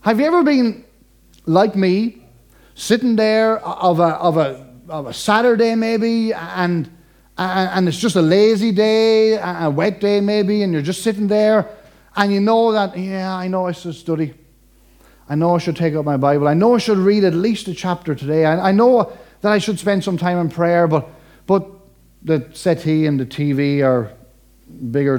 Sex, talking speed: male, 190 wpm